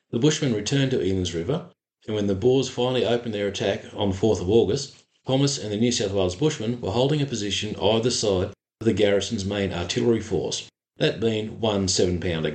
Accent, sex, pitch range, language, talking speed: Australian, male, 100-130 Hz, English, 200 wpm